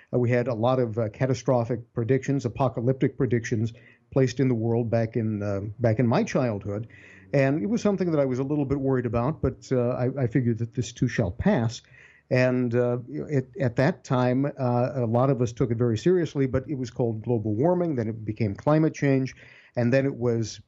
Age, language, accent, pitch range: 50-69, English, American, 115-140 Hz